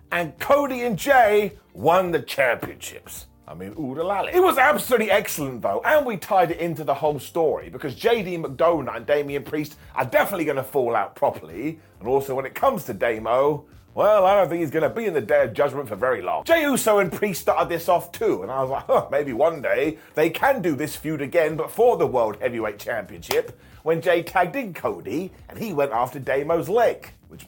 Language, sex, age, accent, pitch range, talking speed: English, male, 30-49, British, 150-225 Hz, 225 wpm